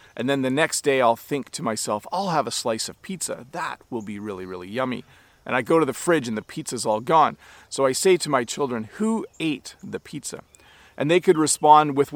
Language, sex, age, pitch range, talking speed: English, male, 40-59, 125-175 Hz, 230 wpm